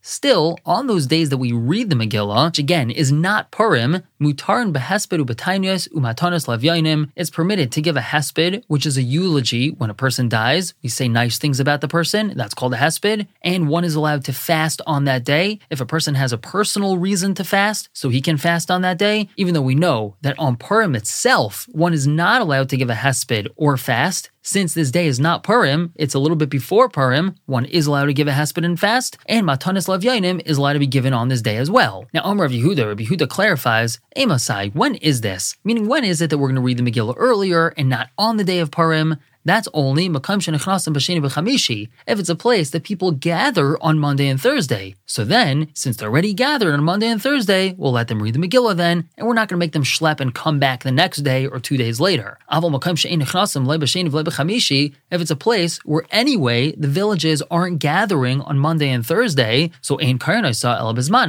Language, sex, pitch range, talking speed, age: English, male, 135-180 Hz, 205 wpm, 20-39